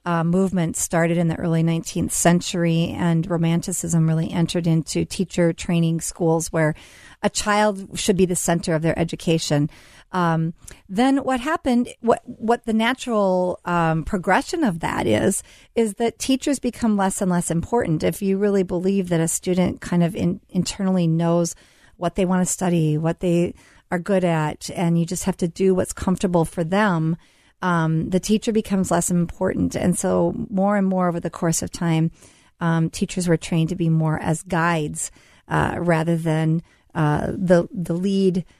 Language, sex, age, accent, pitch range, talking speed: English, female, 40-59, American, 165-195 Hz, 175 wpm